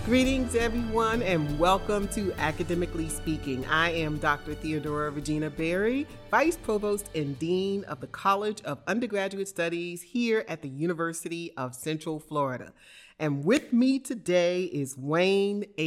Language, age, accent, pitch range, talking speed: English, 30-49, American, 155-225 Hz, 135 wpm